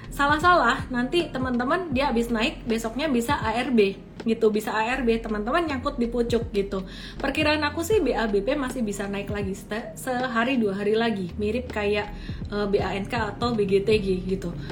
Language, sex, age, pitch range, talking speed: Indonesian, female, 30-49, 200-240 Hz, 145 wpm